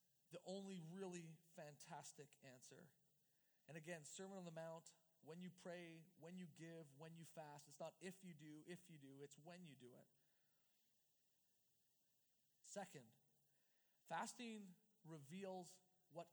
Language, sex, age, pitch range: English, male, 40-59, 150-190 Hz